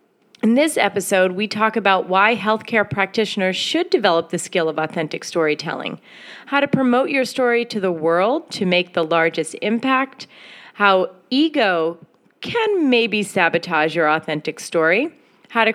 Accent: American